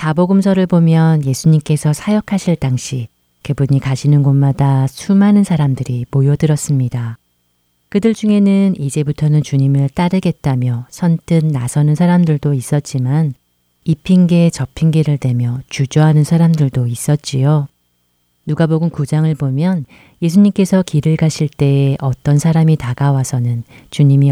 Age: 40-59